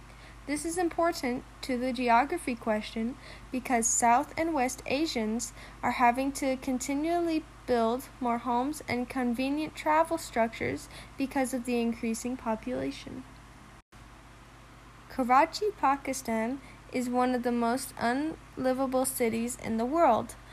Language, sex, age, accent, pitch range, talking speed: English, female, 10-29, American, 235-275 Hz, 115 wpm